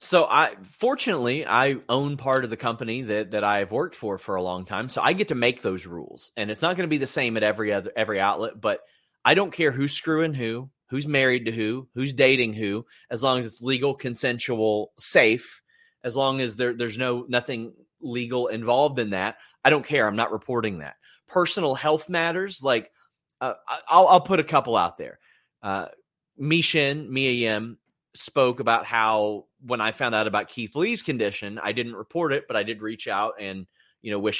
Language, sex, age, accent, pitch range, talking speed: English, male, 30-49, American, 105-140 Hz, 210 wpm